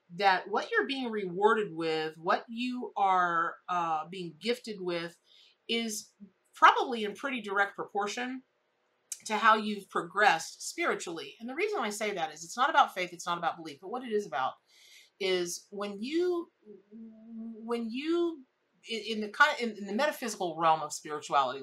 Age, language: 40-59, English